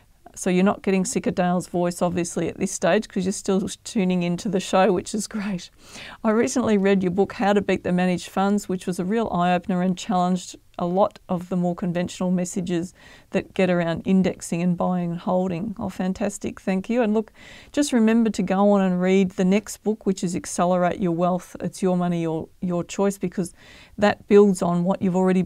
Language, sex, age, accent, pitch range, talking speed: English, female, 40-59, Australian, 180-210 Hz, 210 wpm